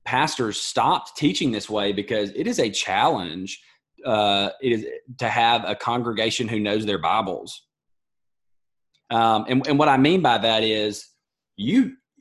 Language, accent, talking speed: English, American, 150 wpm